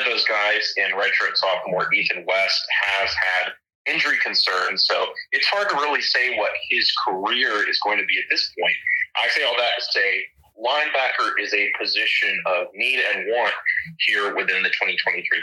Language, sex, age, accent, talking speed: English, male, 30-49, American, 165 wpm